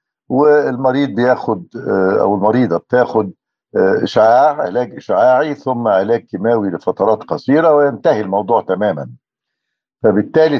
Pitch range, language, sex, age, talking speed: 105-145 Hz, Arabic, male, 60-79, 100 wpm